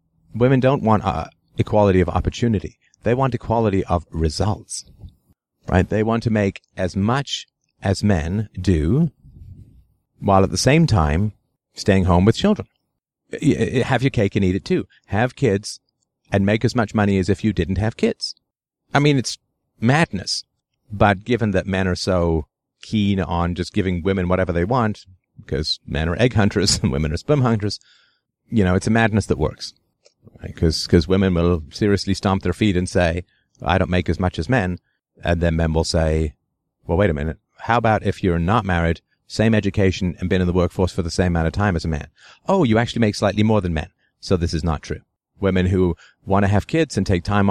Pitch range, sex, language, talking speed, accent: 90-110 Hz, male, English, 200 wpm, American